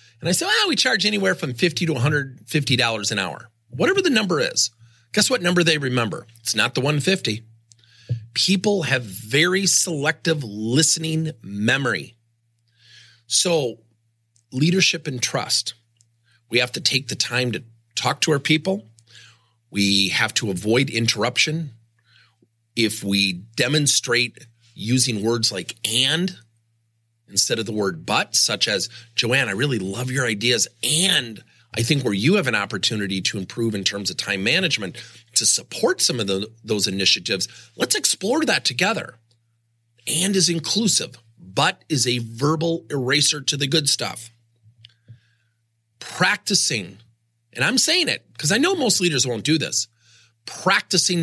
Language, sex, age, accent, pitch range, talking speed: English, male, 40-59, American, 115-155 Hz, 145 wpm